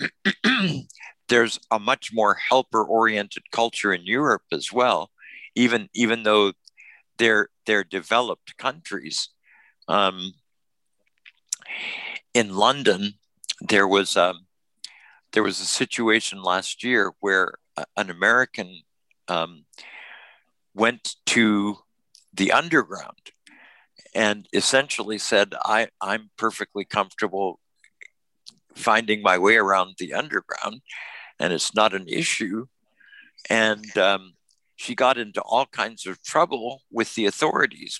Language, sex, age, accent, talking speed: English, male, 60-79, American, 105 wpm